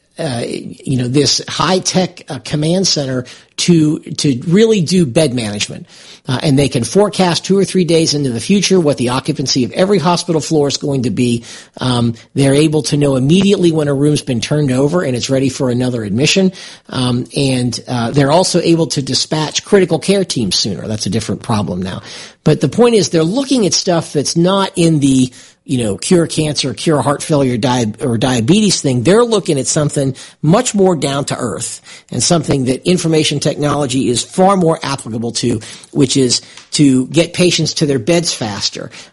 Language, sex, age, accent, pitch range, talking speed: English, male, 50-69, American, 130-180 Hz, 185 wpm